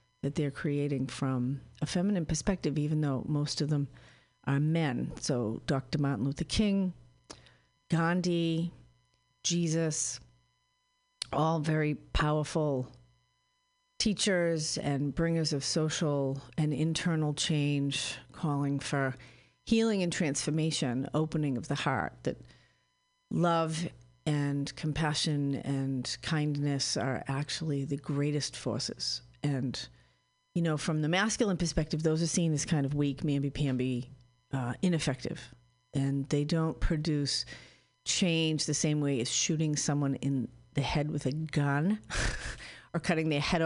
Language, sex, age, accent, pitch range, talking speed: English, female, 50-69, American, 135-165 Hz, 120 wpm